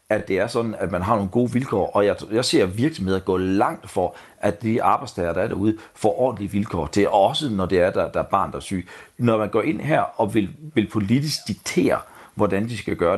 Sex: male